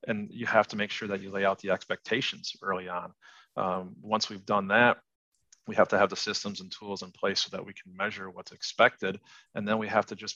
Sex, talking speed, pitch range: male, 245 wpm, 95-110 Hz